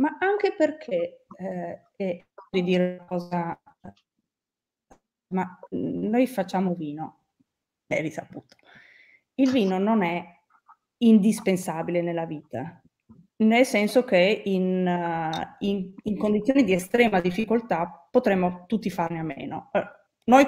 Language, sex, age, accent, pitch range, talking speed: Italian, female, 30-49, native, 185-230 Hz, 110 wpm